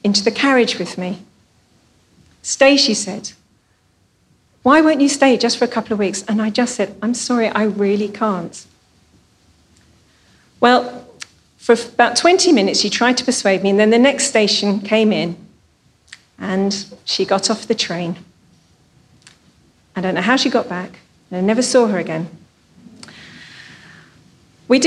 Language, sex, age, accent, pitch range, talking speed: English, female, 40-59, British, 195-245 Hz, 155 wpm